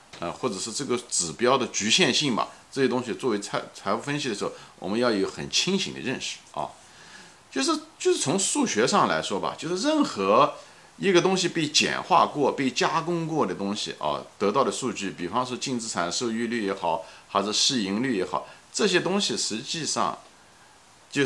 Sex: male